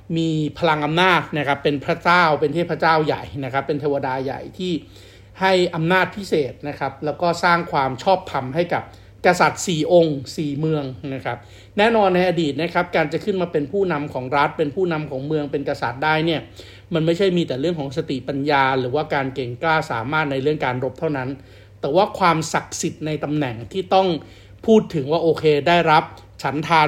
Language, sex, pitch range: Thai, male, 135-170 Hz